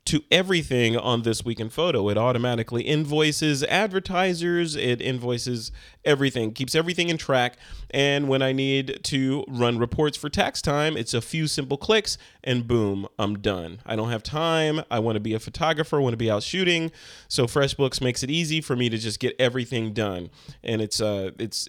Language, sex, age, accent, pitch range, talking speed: English, male, 30-49, American, 115-150 Hz, 185 wpm